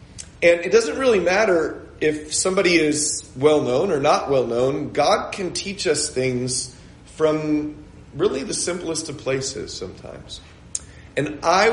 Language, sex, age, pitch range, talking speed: English, male, 40-59, 130-175 Hz, 135 wpm